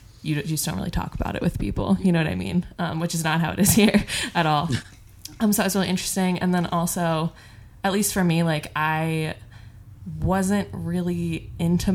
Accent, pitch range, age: American, 145-170 Hz, 20-39